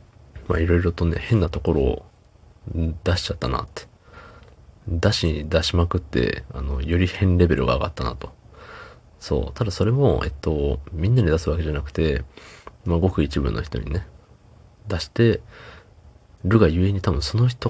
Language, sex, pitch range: Japanese, male, 75-100 Hz